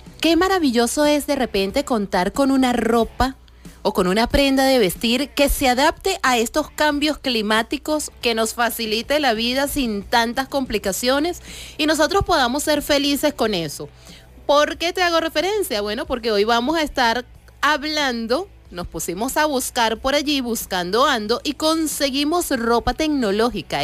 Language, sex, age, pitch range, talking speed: Spanish, female, 30-49, 225-295 Hz, 155 wpm